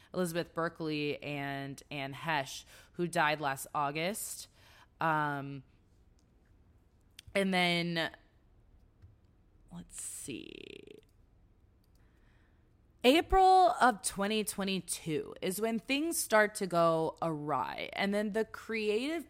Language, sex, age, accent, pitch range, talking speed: English, female, 20-39, American, 130-190 Hz, 85 wpm